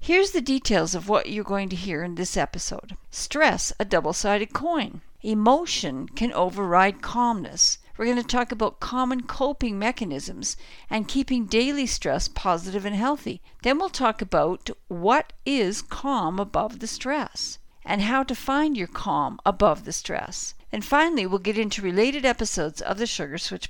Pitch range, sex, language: 200-275 Hz, female, English